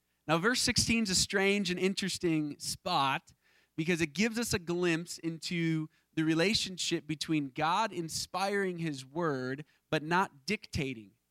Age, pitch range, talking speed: 30-49, 130-195 Hz, 140 wpm